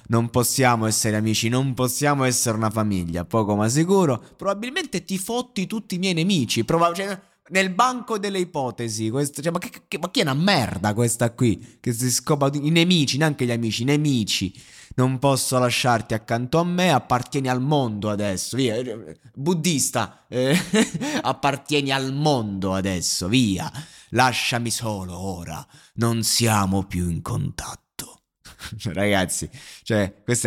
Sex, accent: male, native